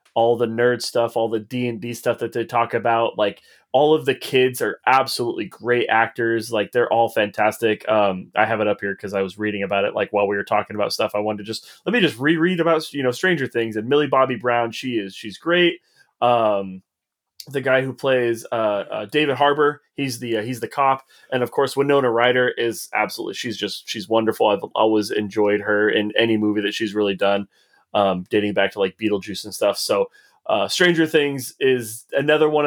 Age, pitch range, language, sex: 20-39, 105-140 Hz, English, male